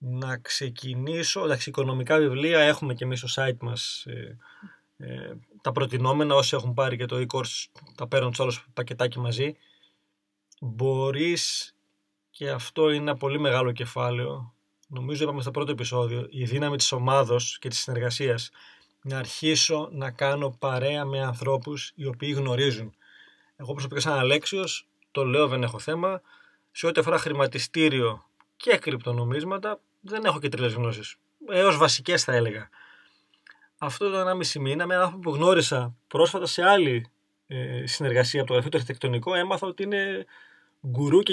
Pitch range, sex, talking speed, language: 125-160 Hz, male, 150 wpm, Greek